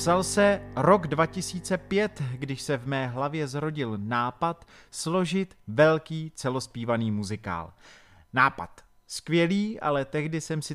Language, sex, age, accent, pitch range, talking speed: Czech, male, 30-49, native, 125-160 Hz, 115 wpm